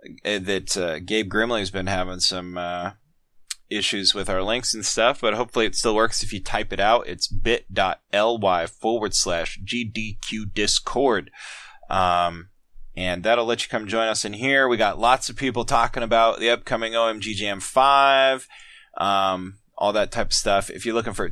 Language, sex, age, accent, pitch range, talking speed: English, male, 20-39, American, 90-115 Hz, 175 wpm